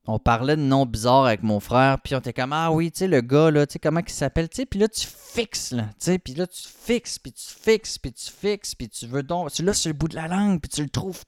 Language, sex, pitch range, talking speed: French, male, 120-165 Hz, 315 wpm